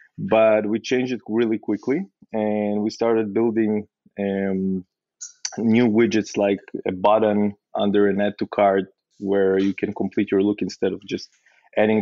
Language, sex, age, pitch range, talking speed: English, male, 20-39, 100-120 Hz, 155 wpm